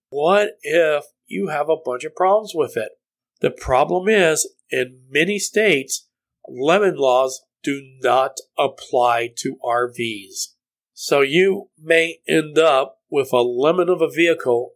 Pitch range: 130-205 Hz